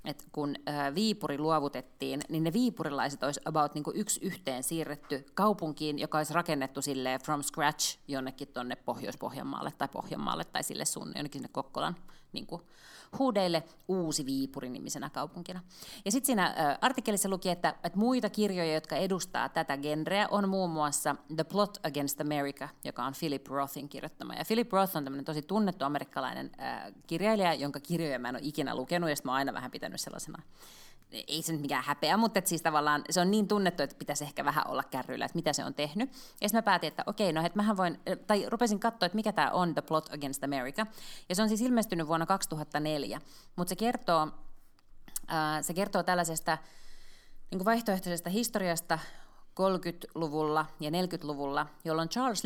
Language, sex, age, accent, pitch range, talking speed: Finnish, female, 30-49, native, 145-190 Hz, 170 wpm